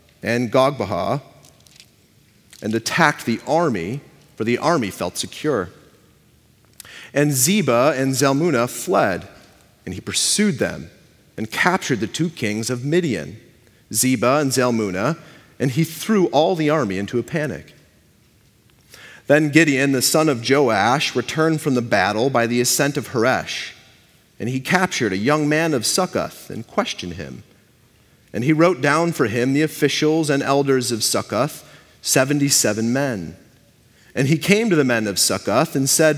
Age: 40-59